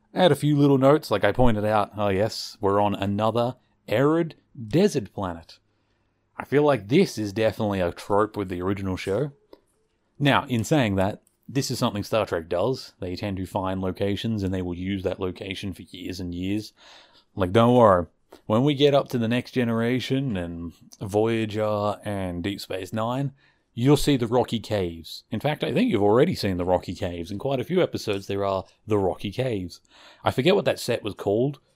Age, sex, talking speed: 30-49, male, 195 wpm